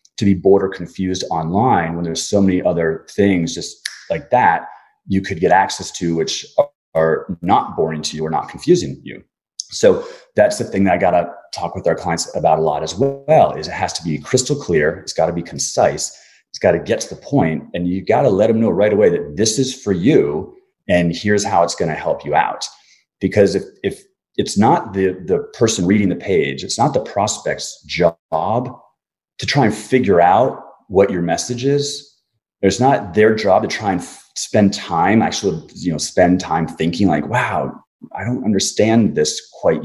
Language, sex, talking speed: English, male, 205 wpm